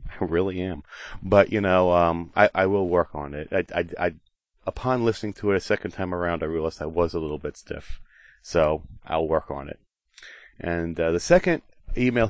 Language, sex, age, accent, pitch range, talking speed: English, male, 30-49, American, 85-110 Hz, 205 wpm